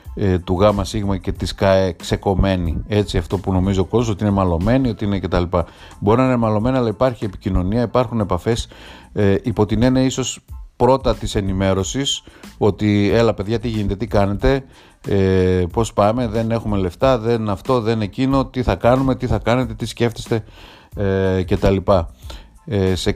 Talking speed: 170 wpm